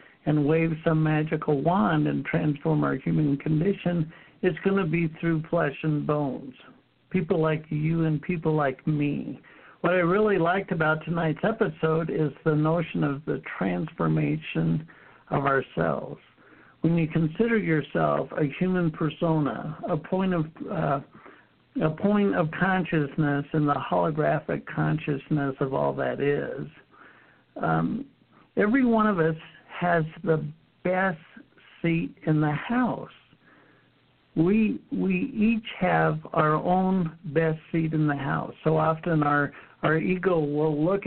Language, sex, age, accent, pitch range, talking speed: English, male, 60-79, American, 150-175 Hz, 135 wpm